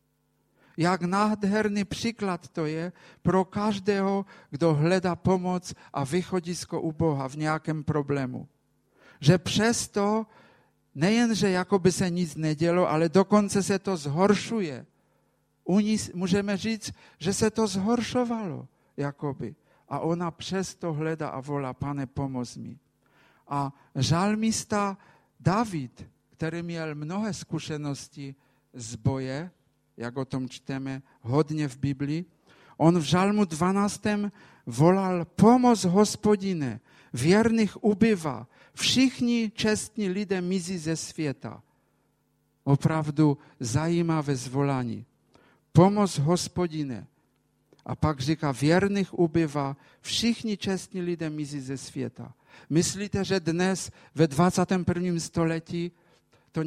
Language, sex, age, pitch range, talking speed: Czech, male, 50-69, 145-195 Hz, 105 wpm